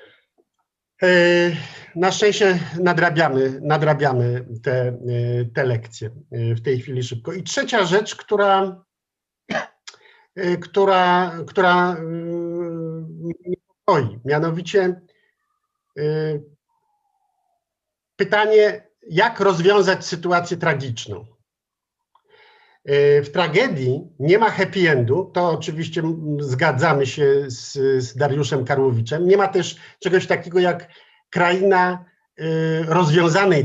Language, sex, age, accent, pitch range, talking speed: Polish, male, 50-69, native, 140-185 Hz, 100 wpm